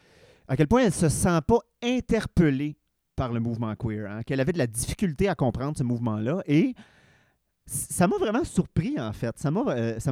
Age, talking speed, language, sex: 30-49, 190 wpm, French, male